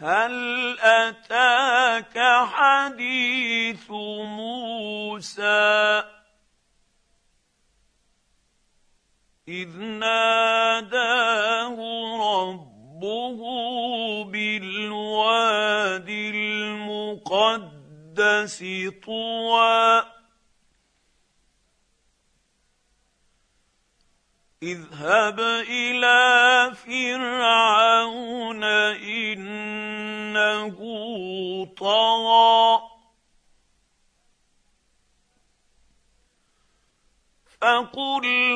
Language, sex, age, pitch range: Arabic, male, 50-69, 210-245 Hz